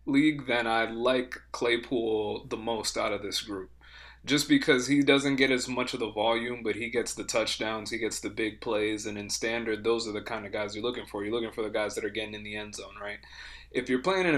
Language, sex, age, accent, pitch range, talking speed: English, male, 20-39, American, 115-135 Hz, 250 wpm